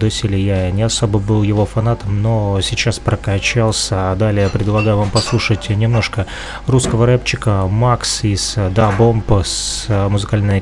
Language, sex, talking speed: Russian, male, 130 wpm